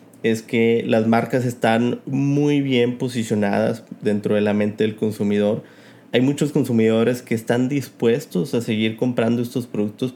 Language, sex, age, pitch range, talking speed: Spanish, male, 30-49, 110-135 Hz, 150 wpm